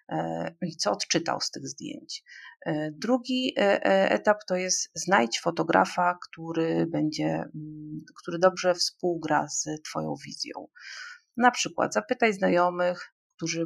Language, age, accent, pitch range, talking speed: Polish, 40-59, native, 165-225 Hz, 110 wpm